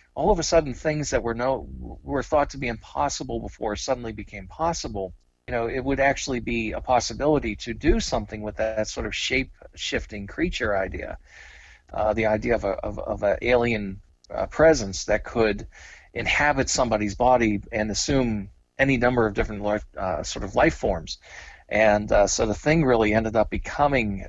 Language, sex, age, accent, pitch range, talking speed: Swedish, male, 40-59, American, 100-115 Hz, 185 wpm